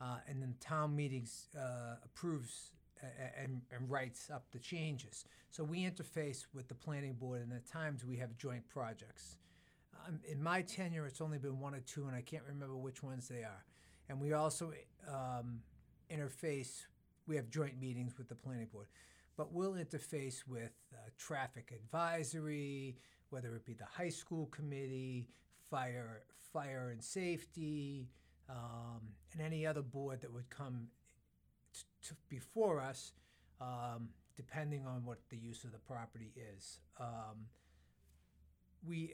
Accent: American